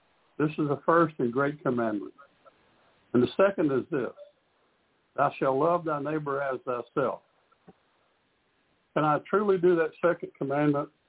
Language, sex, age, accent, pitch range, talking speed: English, male, 60-79, American, 135-170 Hz, 140 wpm